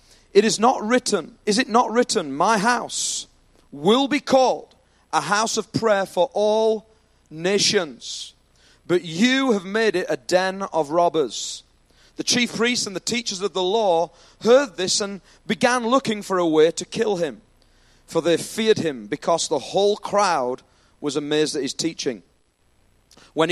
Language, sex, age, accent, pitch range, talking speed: English, male, 40-59, British, 165-235 Hz, 160 wpm